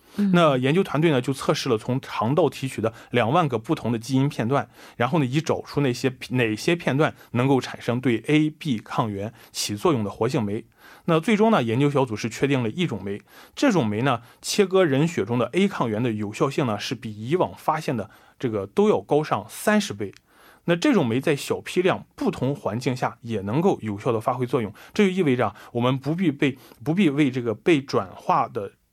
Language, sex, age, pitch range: Korean, male, 20-39, 115-165 Hz